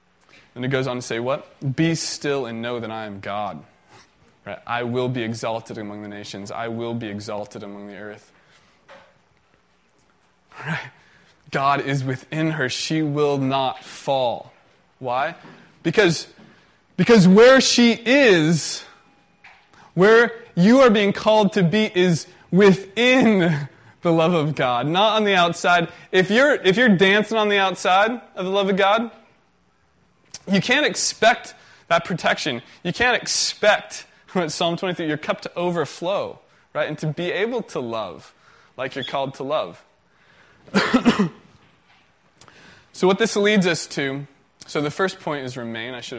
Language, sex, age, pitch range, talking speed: English, male, 20-39, 125-195 Hz, 145 wpm